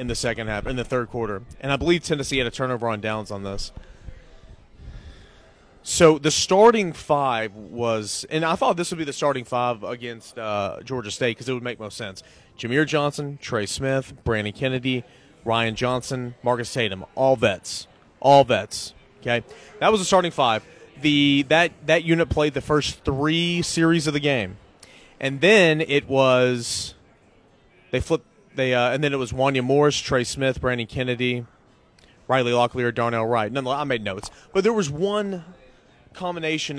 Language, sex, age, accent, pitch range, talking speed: English, male, 30-49, American, 115-145 Hz, 175 wpm